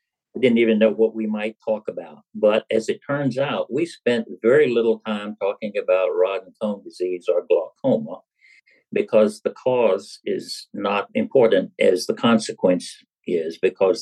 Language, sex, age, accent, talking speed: English, male, 60-79, American, 165 wpm